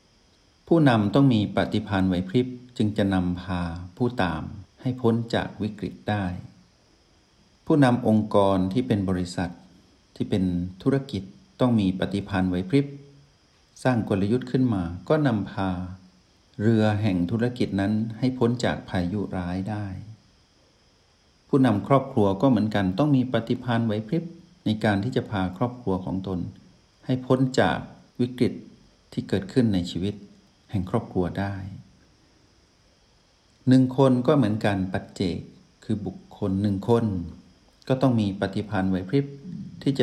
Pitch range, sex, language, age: 95-120 Hz, male, Thai, 60-79